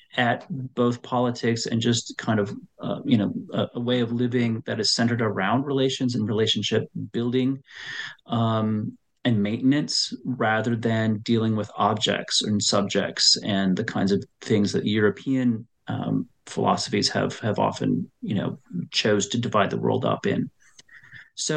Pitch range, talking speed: 110-130 Hz, 155 wpm